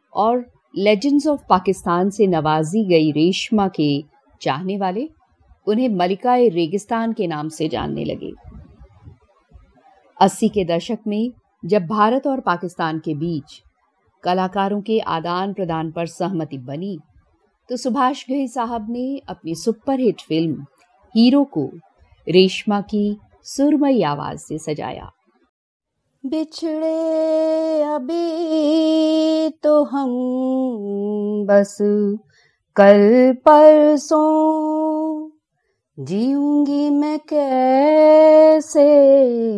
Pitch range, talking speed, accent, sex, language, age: 190-290 Hz, 95 wpm, native, female, Hindi, 50-69